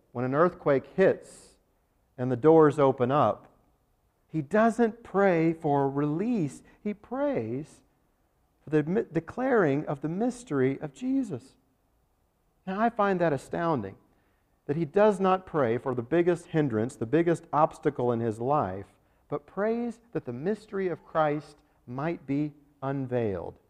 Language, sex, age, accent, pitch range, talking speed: English, male, 50-69, American, 135-195 Hz, 135 wpm